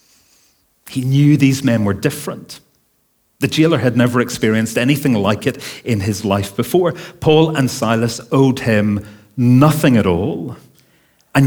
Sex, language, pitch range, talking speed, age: male, English, 105-140 Hz, 140 wpm, 40-59